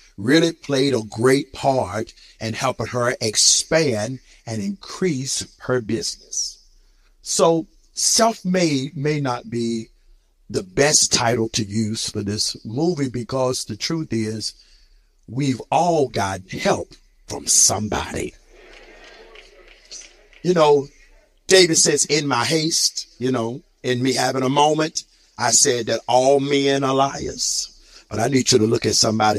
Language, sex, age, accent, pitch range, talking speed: English, male, 50-69, American, 115-150 Hz, 135 wpm